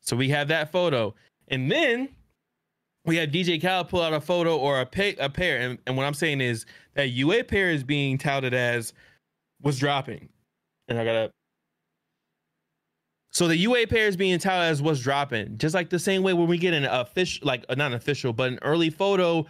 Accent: American